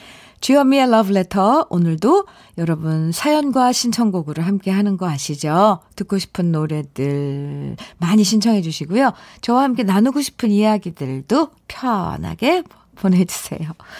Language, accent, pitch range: Korean, native, 155-220 Hz